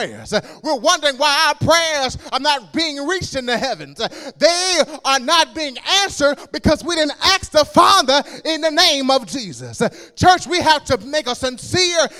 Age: 30-49